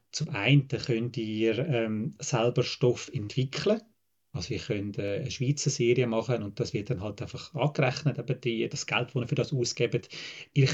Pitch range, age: 115-140 Hz, 30-49